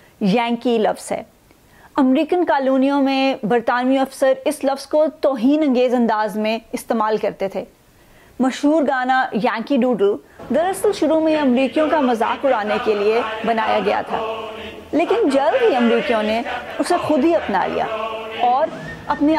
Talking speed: 135 wpm